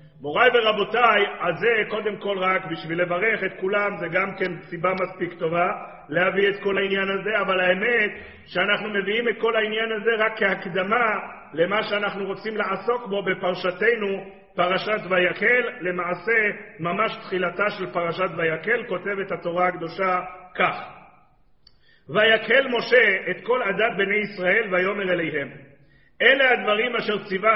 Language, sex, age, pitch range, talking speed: Hebrew, male, 40-59, 180-220 Hz, 135 wpm